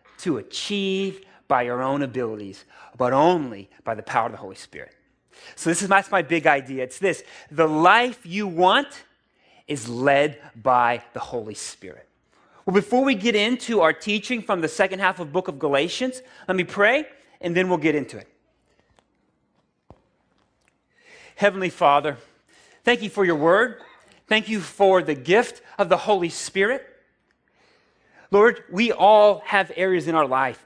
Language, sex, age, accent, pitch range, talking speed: English, male, 30-49, American, 150-220 Hz, 160 wpm